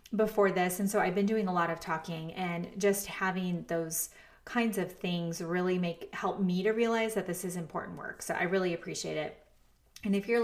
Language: English